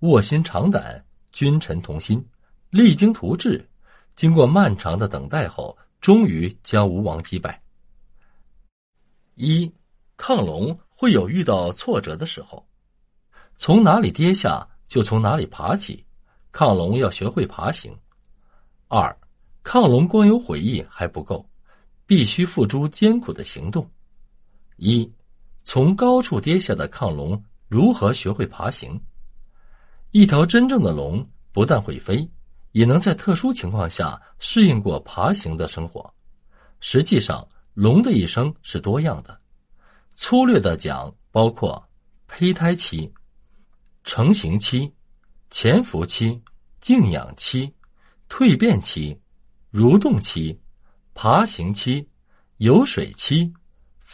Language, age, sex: Chinese, 50-69, male